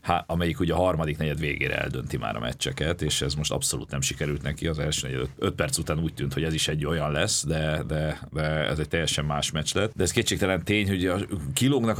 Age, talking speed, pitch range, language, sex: 40-59, 225 wpm, 75-90 Hz, English, male